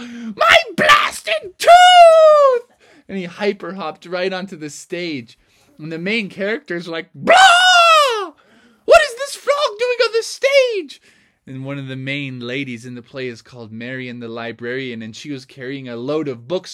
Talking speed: 170 wpm